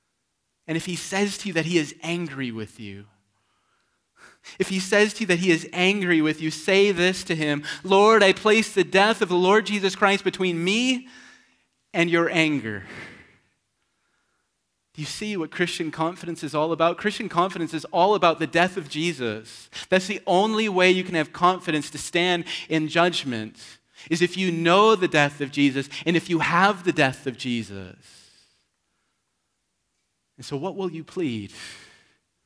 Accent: American